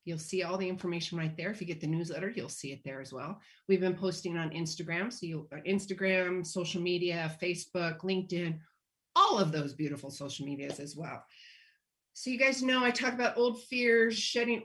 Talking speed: 195 wpm